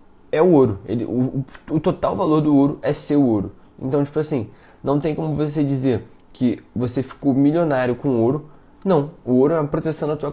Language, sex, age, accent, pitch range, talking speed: Portuguese, male, 20-39, Brazilian, 115-135 Hz, 210 wpm